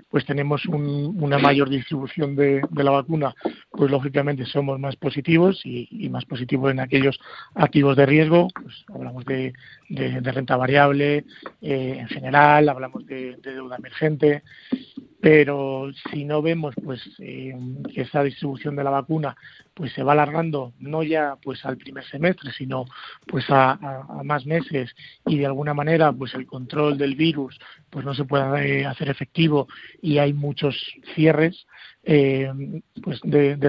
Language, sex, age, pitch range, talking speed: Spanish, male, 40-59, 135-150 Hz, 155 wpm